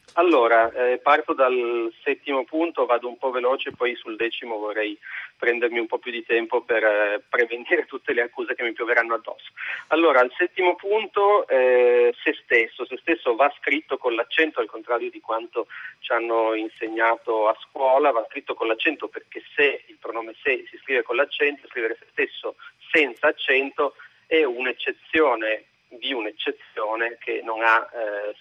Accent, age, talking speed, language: native, 40-59, 165 wpm, Italian